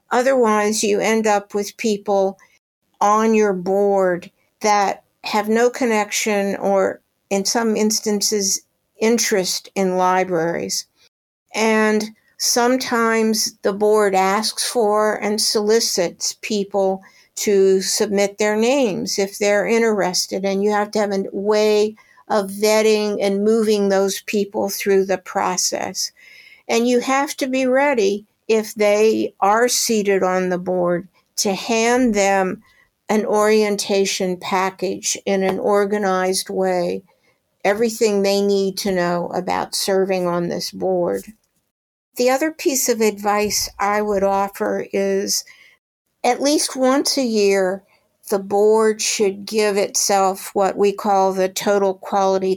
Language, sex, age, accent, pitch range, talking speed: English, female, 60-79, American, 195-220 Hz, 125 wpm